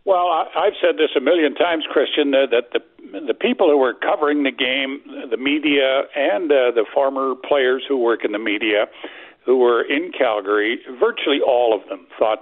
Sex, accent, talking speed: male, American, 180 wpm